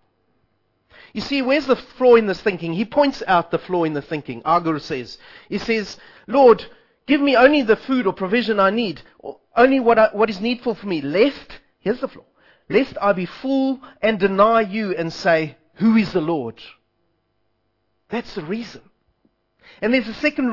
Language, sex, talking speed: English, male, 180 wpm